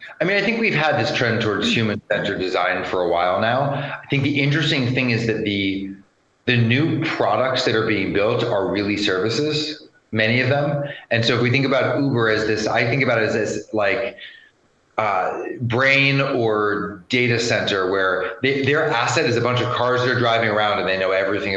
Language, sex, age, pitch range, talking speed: English, male, 30-49, 105-135 Hz, 205 wpm